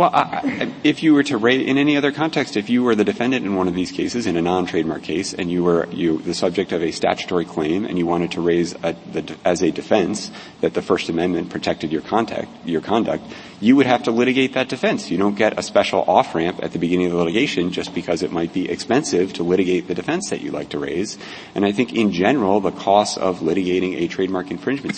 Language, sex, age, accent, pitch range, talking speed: English, male, 40-59, American, 95-120 Hz, 245 wpm